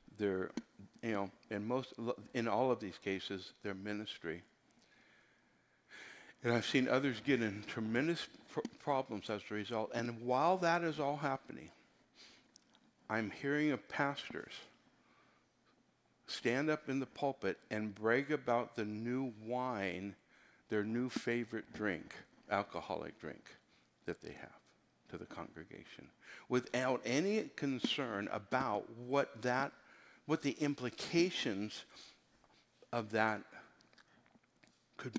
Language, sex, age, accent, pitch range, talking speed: English, male, 60-79, American, 105-130 Hz, 120 wpm